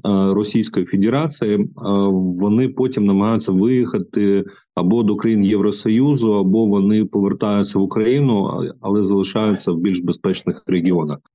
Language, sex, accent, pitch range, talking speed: Ukrainian, male, native, 95-115 Hz, 110 wpm